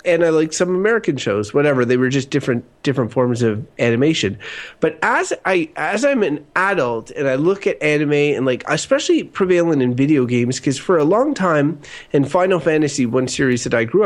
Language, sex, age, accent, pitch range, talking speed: English, male, 30-49, American, 130-180 Hz, 200 wpm